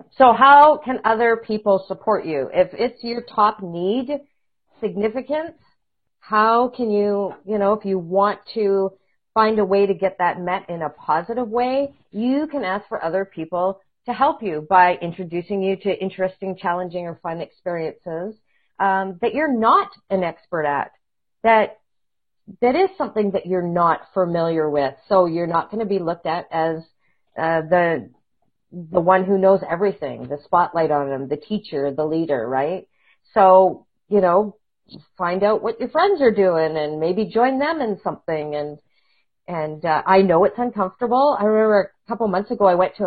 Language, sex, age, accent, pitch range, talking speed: English, female, 40-59, American, 175-225 Hz, 175 wpm